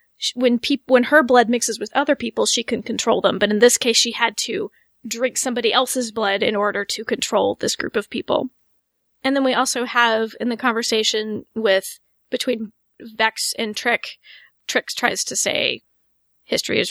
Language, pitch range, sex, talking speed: English, 220-255 Hz, female, 180 wpm